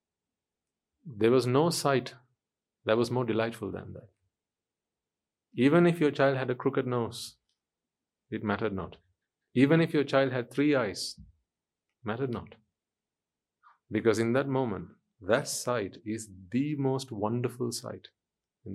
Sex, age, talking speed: male, 40-59, 135 wpm